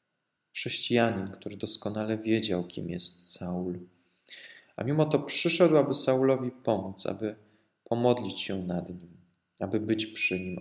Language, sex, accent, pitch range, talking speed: Polish, male, native, 90-110 Hz, 130 wpm